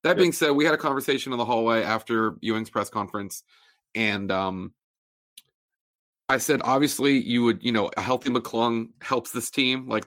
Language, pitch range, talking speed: English, 110-135 Hz, 180 wpm